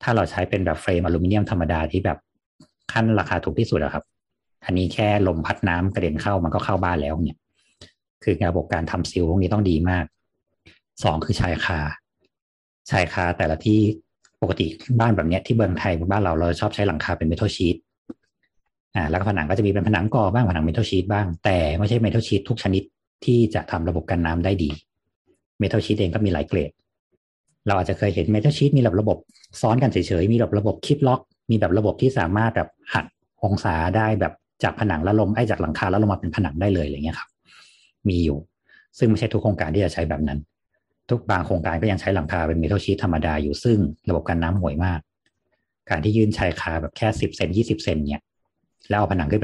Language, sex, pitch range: Thai, male, 85-105 Hz